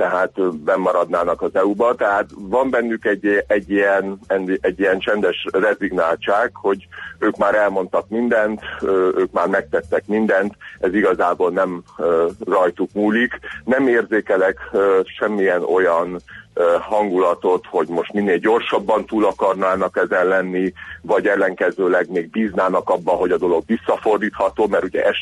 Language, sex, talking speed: Hungarian, male, 130 wpm